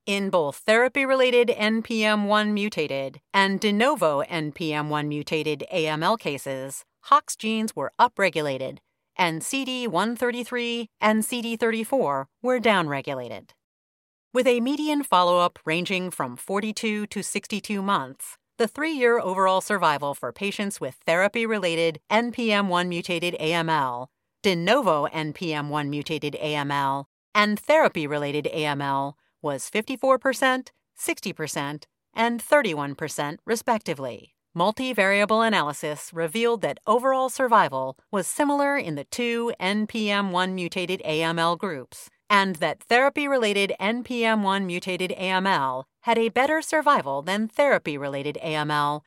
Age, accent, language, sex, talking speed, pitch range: 40-59, American, English, female, 95 wpm, 155-230 Hz